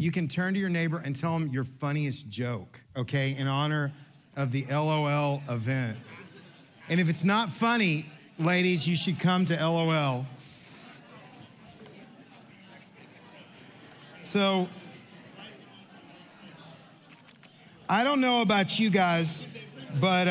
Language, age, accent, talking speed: English, 50-69, American, 110 wpm